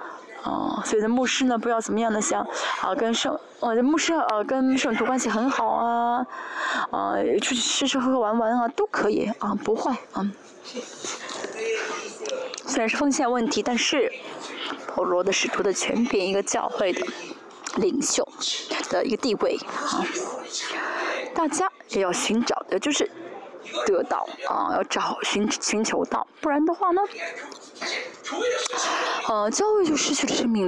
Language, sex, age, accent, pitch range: Chinese, female, 20-39, native, 235-380 Hz